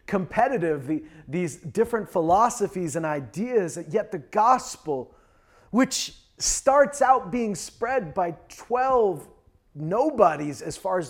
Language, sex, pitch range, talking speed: English, male, 175-245 Hz, 110 wpm